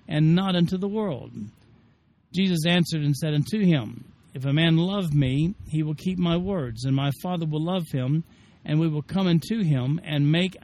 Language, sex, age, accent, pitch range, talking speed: English, male, 60-79, American, 140-180 Hz, 195 wpm